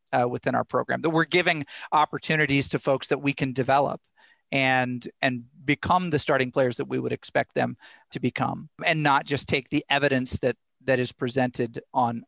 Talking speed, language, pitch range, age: 185 wpm, English, 135-175 Hz, 50-69